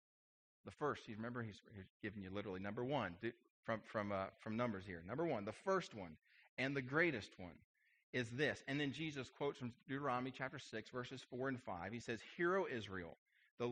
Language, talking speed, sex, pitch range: English, 200 wpm, male, 110-140 Hz